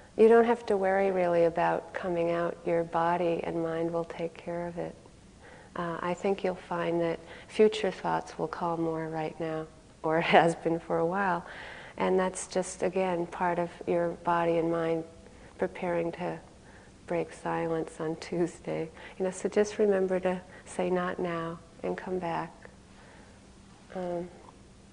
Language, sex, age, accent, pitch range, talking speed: English, female, 40-59, American, 170-195 Hz, 160 wpm